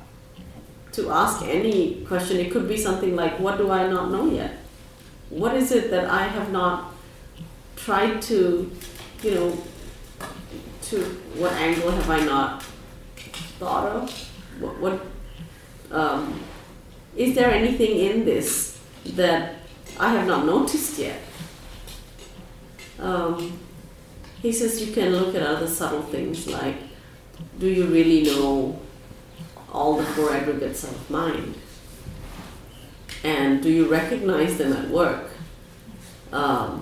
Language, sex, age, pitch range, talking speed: English, female, 30-49, 150-190 Hz, 120 wpm